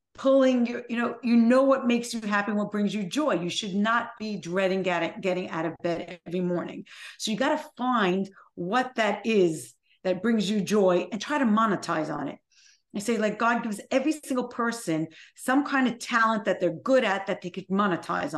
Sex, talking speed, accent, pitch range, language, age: female, 205 wpm, American, 205-270 Hz, English, 40-59